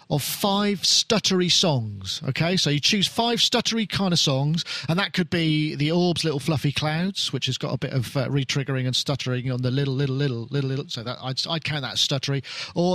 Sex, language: male, English